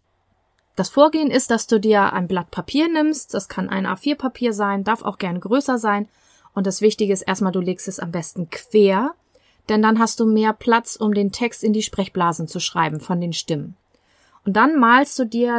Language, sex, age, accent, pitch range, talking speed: German, female, 30-49, German, 195-240 Hz, 205 wpm